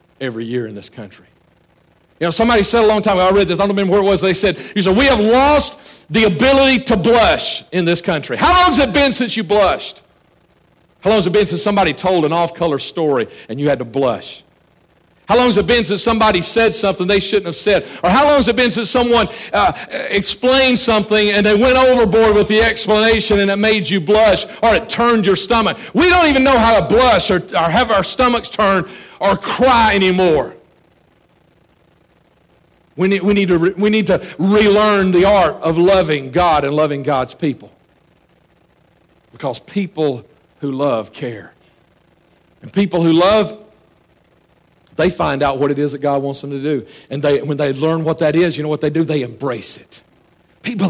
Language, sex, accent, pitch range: English, male, American, 165-225 Hz